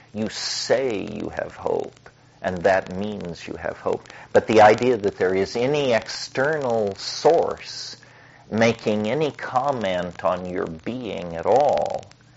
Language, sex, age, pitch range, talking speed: English, male, 50-69, 95-120 Hz, 135 wpm